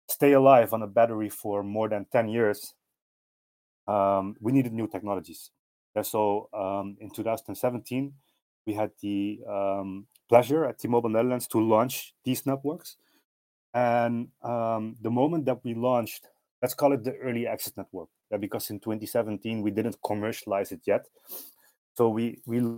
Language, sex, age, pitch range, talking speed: English, male, 30-49, 105-130 Hz, 150 wpm